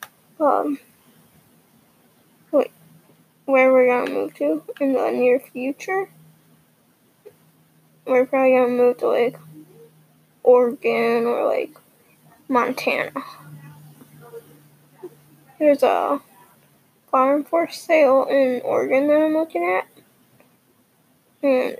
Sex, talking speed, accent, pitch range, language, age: female, 95 wpm, American, 245-290 Hz, English, 10-29